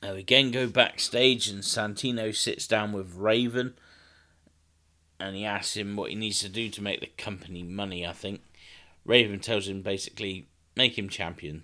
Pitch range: 85-110 Hz